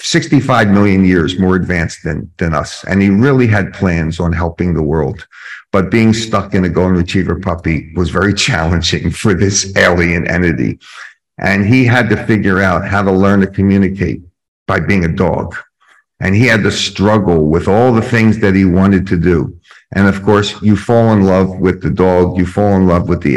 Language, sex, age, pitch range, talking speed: English, male, 50-69, 90-105 Hz, 200 wpm